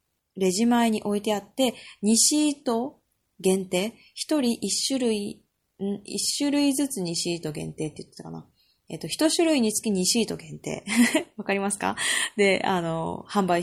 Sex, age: female, 20-39